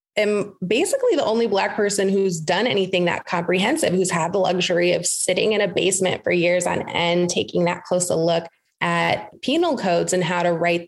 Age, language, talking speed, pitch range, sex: 20-39, English, 200 wpm, 170-195 Hz, female